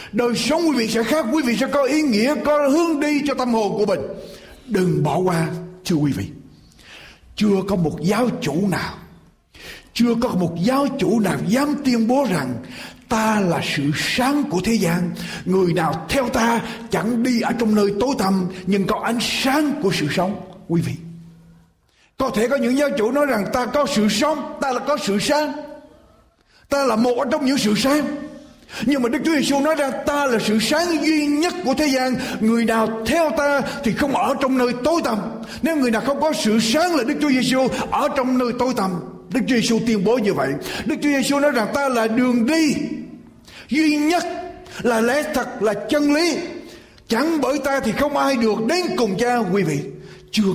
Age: 60-79